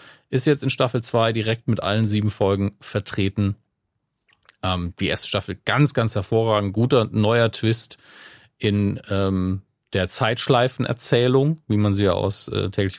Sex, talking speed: male, 150 wpm